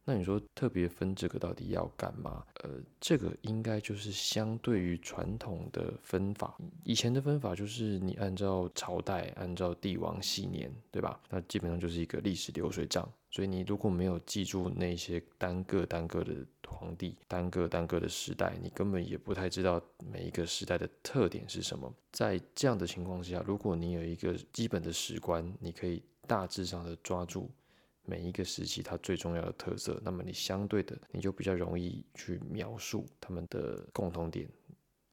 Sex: male